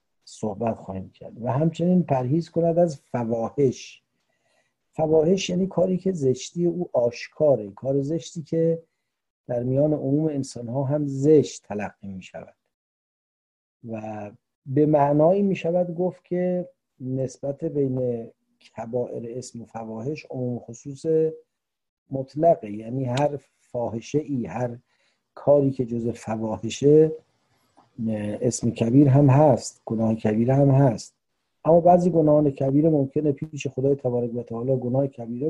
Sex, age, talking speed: male, 50-69, 125 wpm